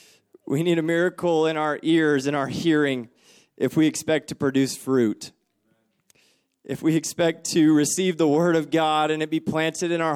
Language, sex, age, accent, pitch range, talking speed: English, male, 20-39, American, 145-170 Hz, 185 wpm